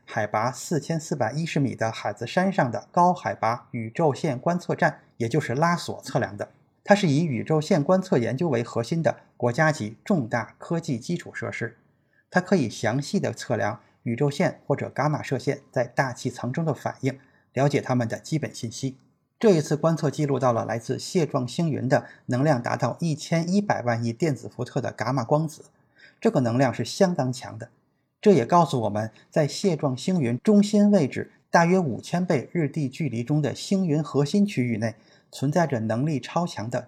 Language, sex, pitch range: Chinese, male, 120-170 Hz